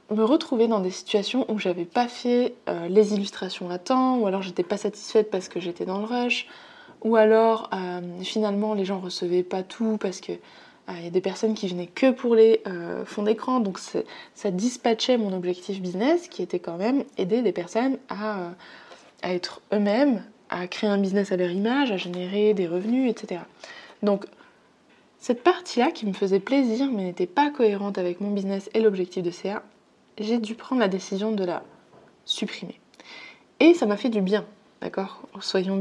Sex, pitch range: female, 185-230 Hz